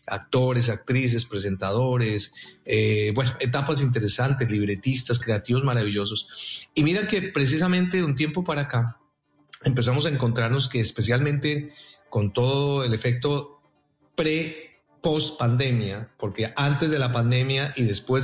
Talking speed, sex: 120 wpm, male